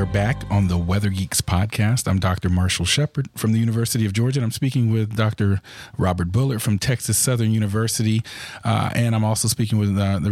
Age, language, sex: 40-59, English, male